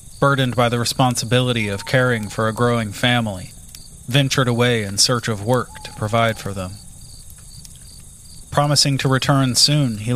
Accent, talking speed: American, 150 wpm